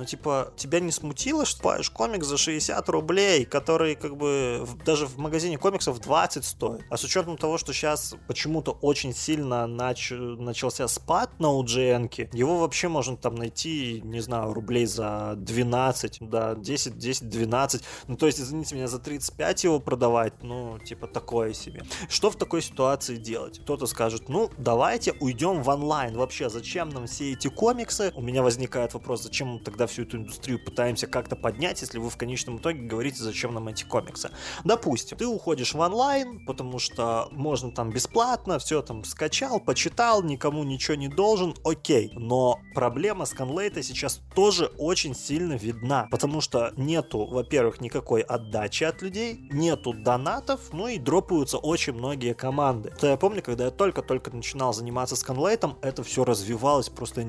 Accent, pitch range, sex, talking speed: native, 120-155 Hz, male, 165 wpm